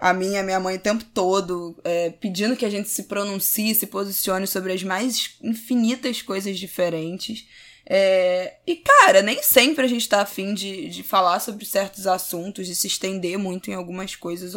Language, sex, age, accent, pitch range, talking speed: Portuguese, female, 10-29, Brazilian, 180-255 Hz, 190 wpm